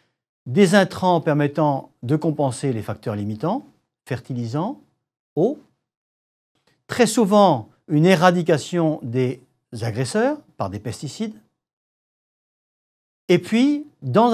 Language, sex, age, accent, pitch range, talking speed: French, male, 60-79, French, 125-175 Hz, 90 wpm